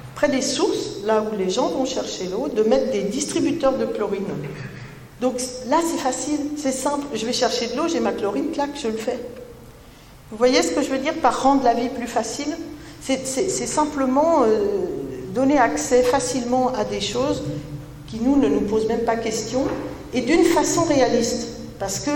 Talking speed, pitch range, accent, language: 190 wpm, 165-265 Hz, French, French